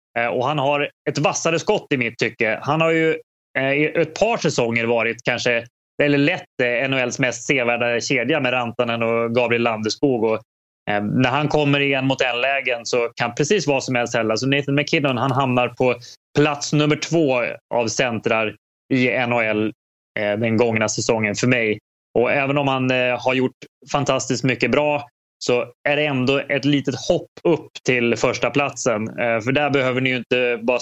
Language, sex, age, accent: English, male, 20-39, Swedish